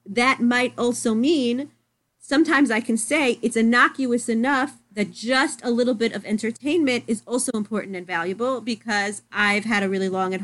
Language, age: English, 30-49